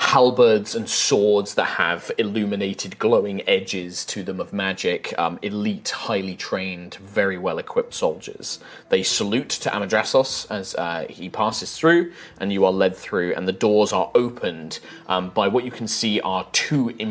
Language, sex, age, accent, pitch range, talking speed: English, male, 20-39, British, 100-130 Hz, 160 wpm